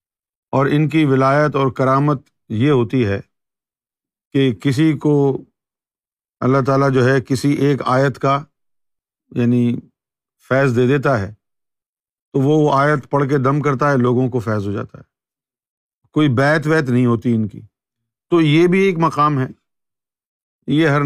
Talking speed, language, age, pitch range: 155 wpm, Urdu, 50-69, 120-150 Hz